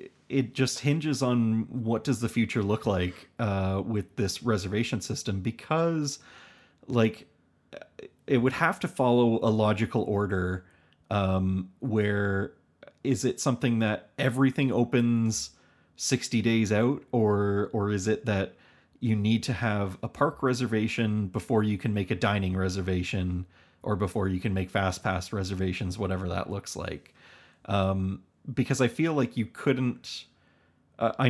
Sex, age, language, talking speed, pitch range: male, 30-49, English, 145 wpm, 95-120 Hz